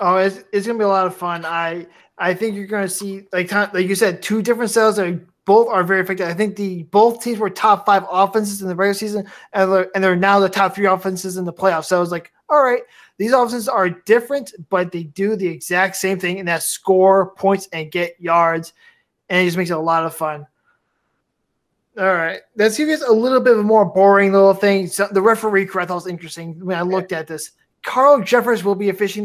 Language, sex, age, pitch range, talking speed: English, male, 20-39, 185-225 Hz, 245 wpm